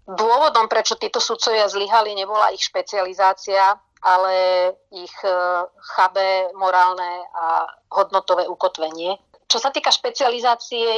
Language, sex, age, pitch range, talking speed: Slovak, female, 30-49, 180-205 Hz, 105 wpm